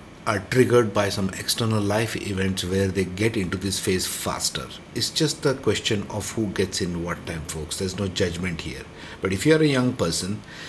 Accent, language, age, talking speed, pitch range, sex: Indian, English, 50-69, 195 wpm, 95-125 Hz, male